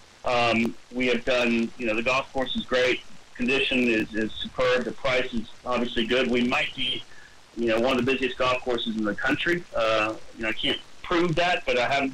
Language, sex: English, male